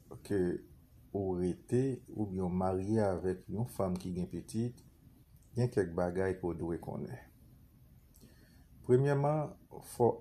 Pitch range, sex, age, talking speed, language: 90-105 Hz, male, 50-69, 130 wpm, English